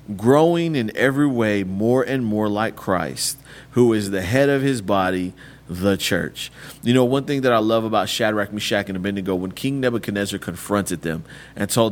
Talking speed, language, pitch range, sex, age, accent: 185 wpm, English, 105-135 Hz, male, 30-49, American